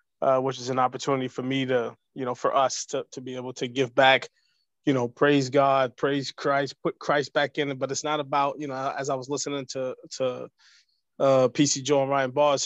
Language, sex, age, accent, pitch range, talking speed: English, male, 20-39, American, 135-175 Hz, 230 wpm